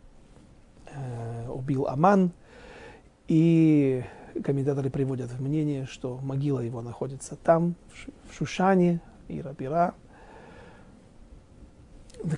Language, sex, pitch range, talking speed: Russian, male, 140-185 Hz, 80 wpm